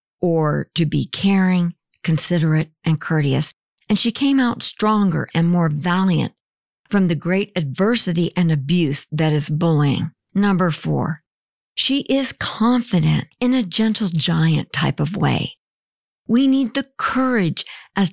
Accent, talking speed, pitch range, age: American, 135 wpm, 160-205 Hz, 50-69